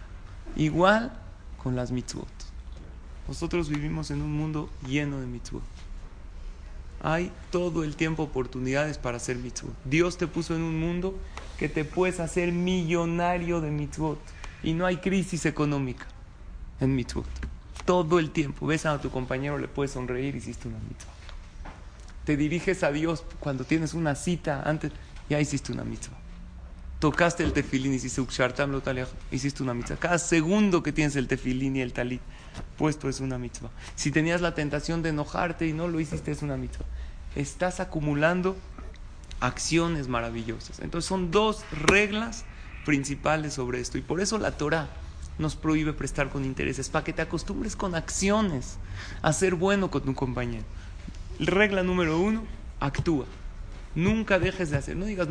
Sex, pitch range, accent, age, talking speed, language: male, 125-170 Hz, Mexican, 30-49, 155 wpm, Spanish